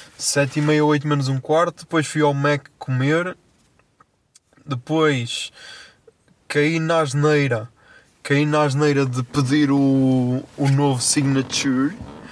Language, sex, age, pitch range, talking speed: Portuguese, male, 20-39, 130-150 Hz, 120 wpm